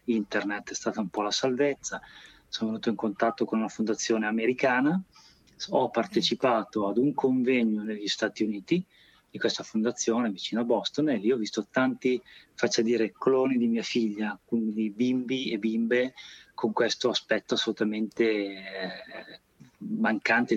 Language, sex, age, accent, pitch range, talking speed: Italian, male, 30-49, native, 105-120 Hz, 145 wpm